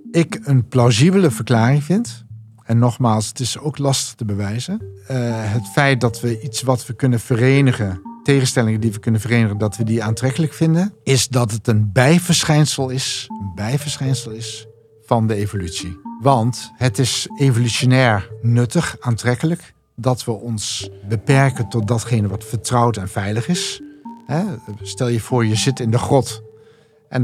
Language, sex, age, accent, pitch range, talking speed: Dutch, male, 50-69, Dutch, 110-140 Hz, 155 wpm